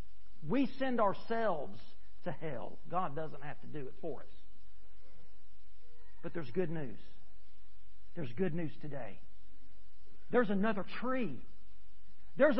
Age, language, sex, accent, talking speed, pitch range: 50-69, English, male, American, 120 wpm, 190-270 Hz